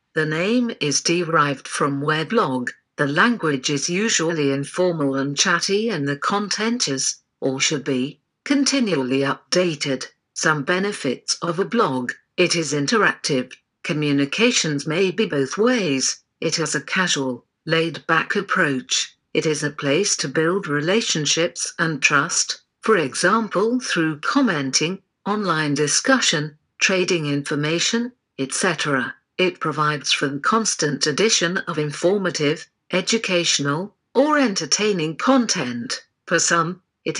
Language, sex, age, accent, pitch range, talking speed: English, female, 50-69, British, 145-185 Hz, 120 wpm